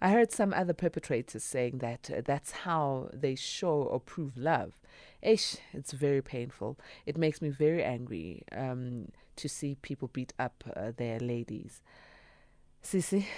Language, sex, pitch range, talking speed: English, female, 120-150 Hz, 150 wpm